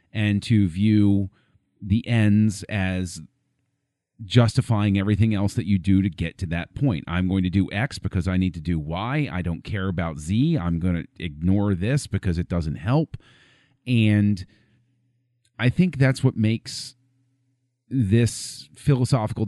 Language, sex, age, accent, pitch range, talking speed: English, male, 40-59, American, 95-125 Hz, 155 wpm